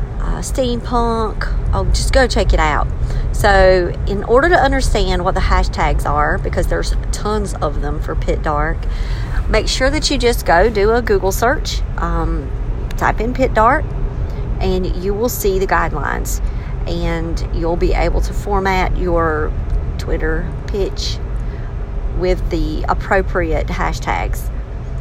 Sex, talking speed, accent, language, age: female, 140 wpm, American, English, 40-59